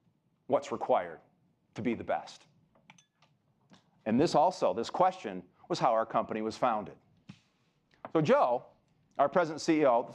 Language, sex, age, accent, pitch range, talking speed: English, male, 40-59, American, 115-180 Hz, 135 wpm